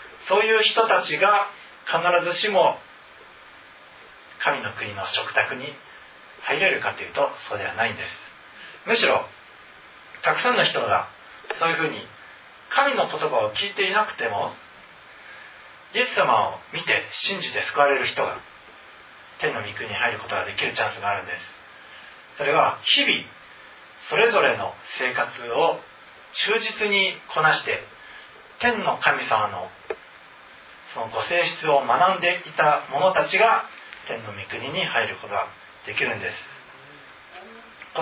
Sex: male